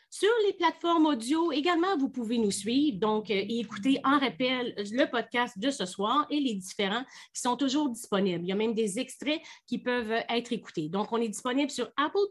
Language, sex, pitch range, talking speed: French, female, 215-285 Hz, 205 wpm